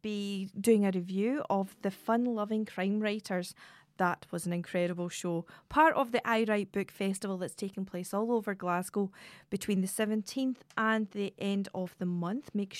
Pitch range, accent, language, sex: 185-225 Hz, British, English, female